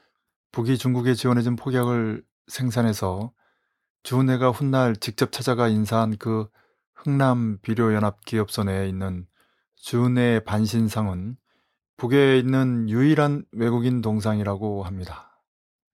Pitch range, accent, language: 105-125 Hz, native, Korean